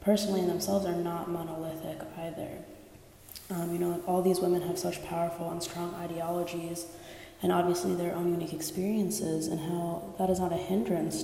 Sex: female